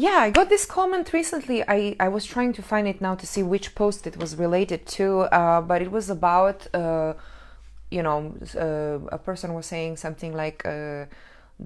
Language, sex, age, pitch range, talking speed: English, female, 20-39, 150-200 Hz, 195 wpm